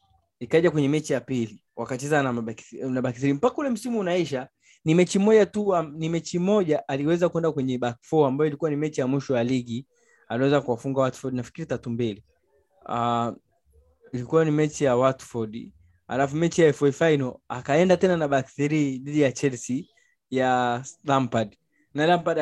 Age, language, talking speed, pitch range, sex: 20-39, Swahili, 165 wpm, 130-175 Hz, male